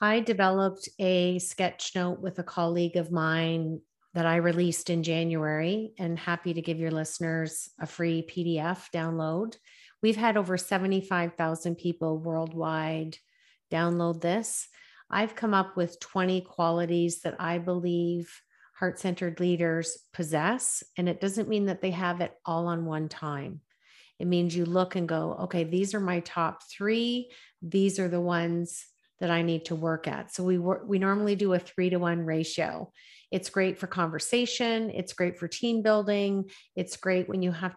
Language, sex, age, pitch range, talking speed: English, female, 40-59, 170-195 Hz, 165 wpm